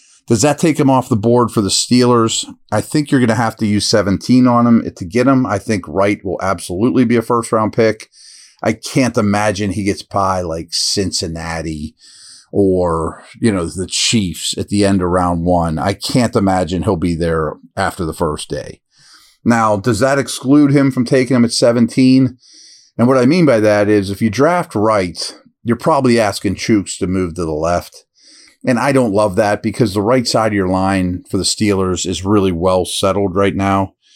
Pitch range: 95-120 Hz